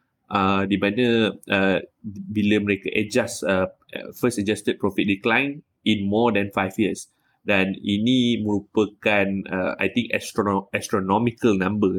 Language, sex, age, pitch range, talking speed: Malay, male, 20-39, 100-120 Hz, 125 wpm